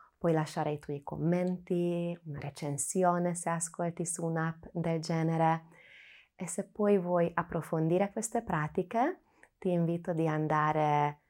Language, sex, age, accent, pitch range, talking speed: Italian, female, 20-39, native, 150-175 Hz, 125 wpm